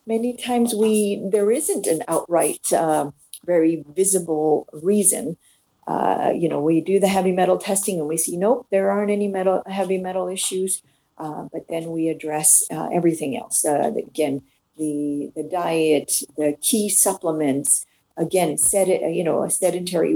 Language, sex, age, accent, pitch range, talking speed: English, female, 50-69, American, 165-205 Hz, 160 wpm